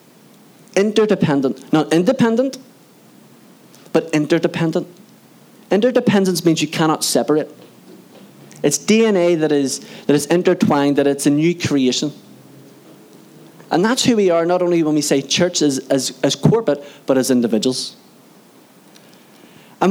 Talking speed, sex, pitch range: 120 wpm, male, 140-190 Hz